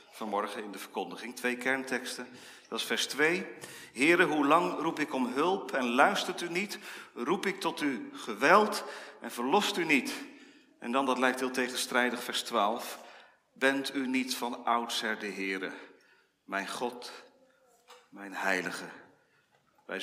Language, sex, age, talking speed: Dutch, male, 40-59, 150 wpm